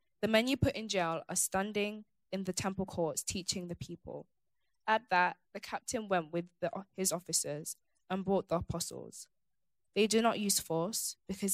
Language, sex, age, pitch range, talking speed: English, female, 20-39, 165-195 Hz, 170 wpm